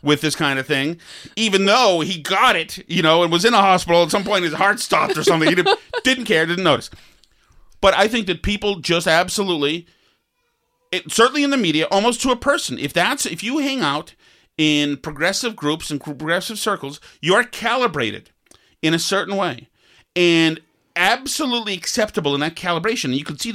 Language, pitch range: English, 135-195 Hz